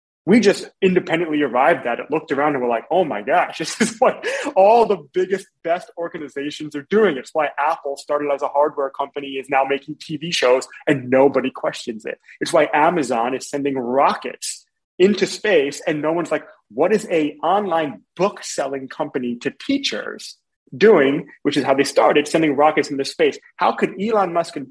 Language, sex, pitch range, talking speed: English, male, 135-170 Hz, 185 wpm